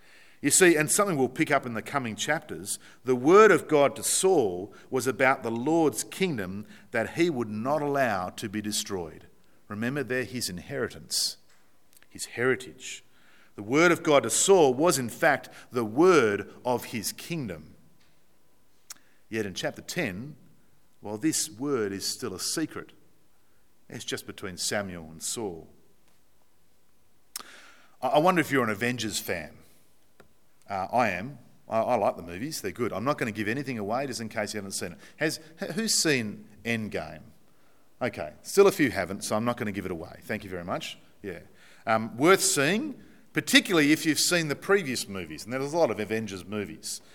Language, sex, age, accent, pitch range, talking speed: English, male, 50-69, Australian, 105-160 Hz, 175 wpm